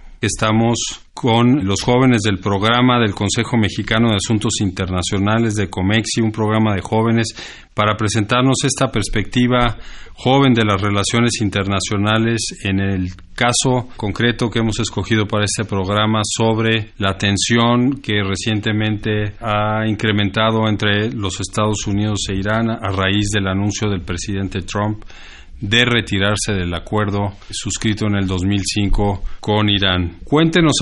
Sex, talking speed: male, 130 wpm